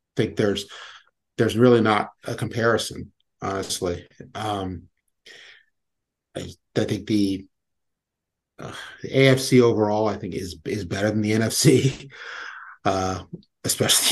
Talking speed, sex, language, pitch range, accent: 120 wpm, male, English, 100-130 Hz, American